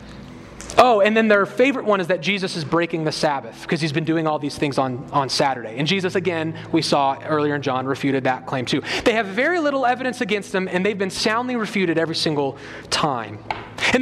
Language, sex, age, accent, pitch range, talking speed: English, male, 30-49, American, 150-220 Hz, 220 wpm